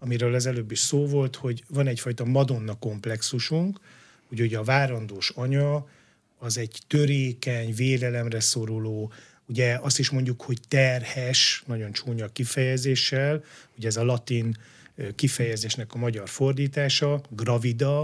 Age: 30-49